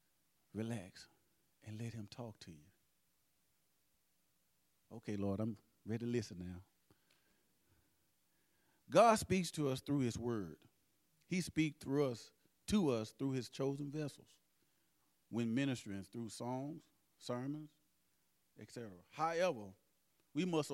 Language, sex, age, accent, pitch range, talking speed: English, male, 40-59, American, 110-175 Hz, 115 wpm